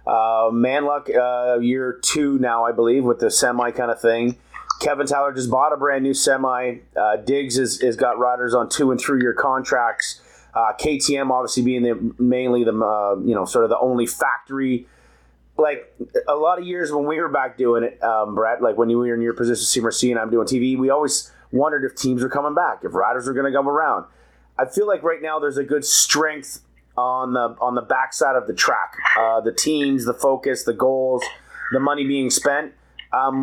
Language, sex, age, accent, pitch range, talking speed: English, male, 30-49, American, 120-145 Hz, 215 wpm